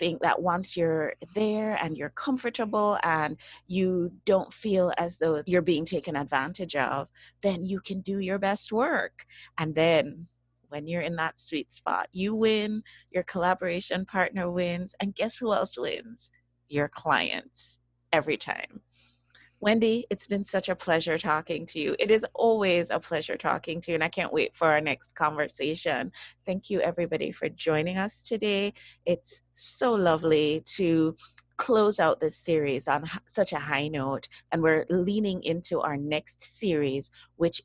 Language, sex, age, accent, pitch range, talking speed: English, female, 30-49, American, 155-215 Hz, 165 wpm